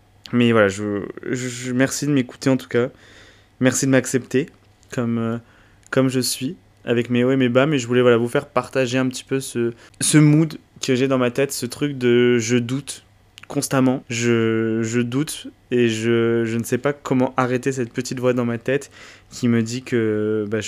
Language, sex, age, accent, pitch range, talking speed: French, male, 20-39, French, 115-130 Hz, 205 wpm